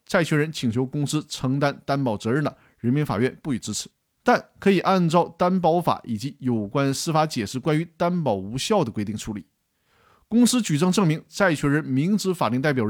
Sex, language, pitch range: male, Chinese, 125-185 Hz